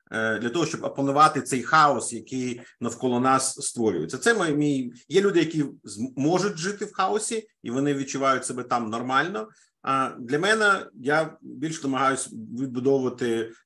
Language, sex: Ukrainian, male